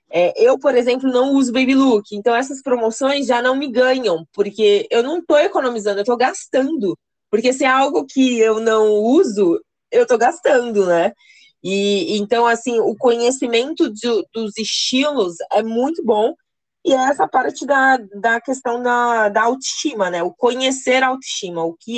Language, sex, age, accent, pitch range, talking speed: Portuguese, female, 20-39, Brazilian, 185-255 Hz, 165 wpm